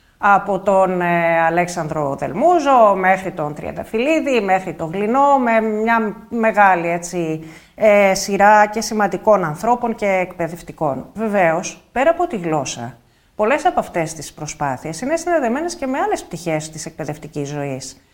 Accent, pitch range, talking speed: native, 170-225 Hz, 135 wpm